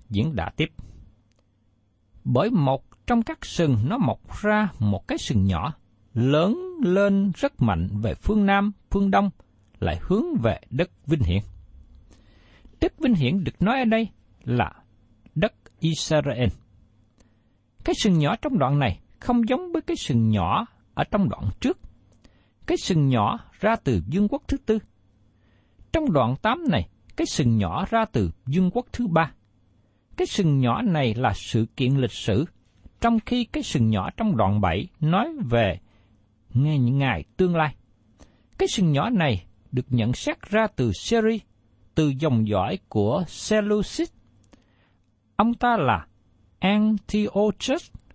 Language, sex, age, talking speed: Vietnamese, male, 60-79, 150 wpm